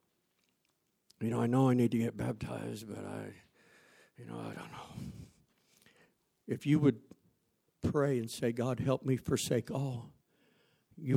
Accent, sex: American, male